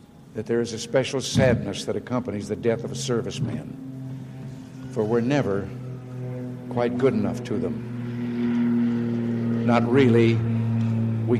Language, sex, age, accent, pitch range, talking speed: English, male, 60-79, American, 115-130 Hz, 125 wpm